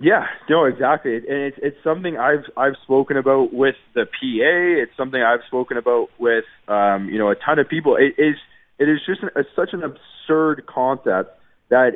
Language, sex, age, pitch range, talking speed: English, male, 20-39, 115-150 Hz, 190 wpm